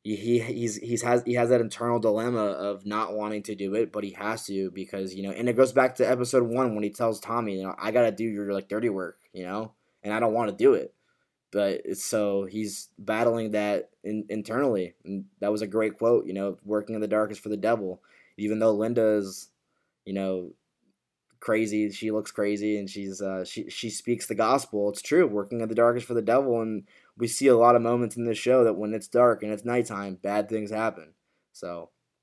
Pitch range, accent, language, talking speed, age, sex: 105-120 Hz, American, English, 225 wpm, 10-29, male